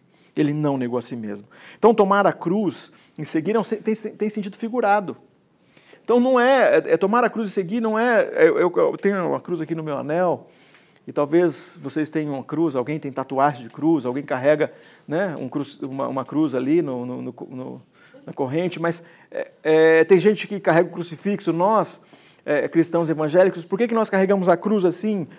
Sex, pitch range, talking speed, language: male, 170-265 Hz, 205 wpm, Portuguese